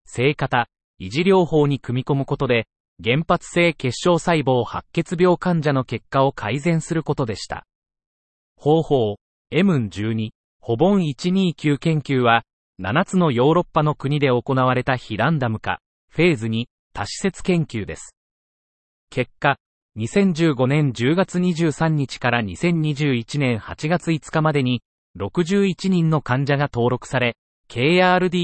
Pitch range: 115-165 Hz